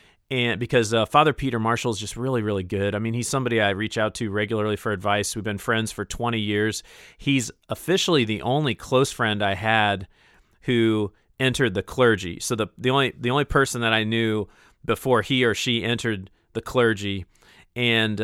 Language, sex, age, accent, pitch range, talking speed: English, male, 40-59, American, 105-120 Hz, 190 wpm